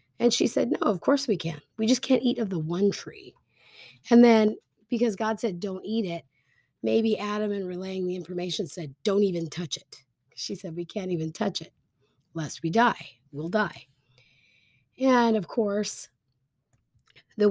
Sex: female